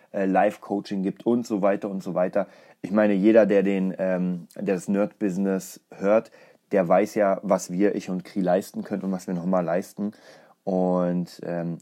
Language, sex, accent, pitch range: German, male, German, 95-120 Hz